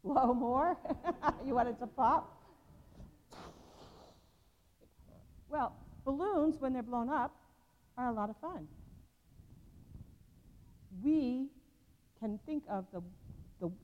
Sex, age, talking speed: female, 50-69, 105 wpm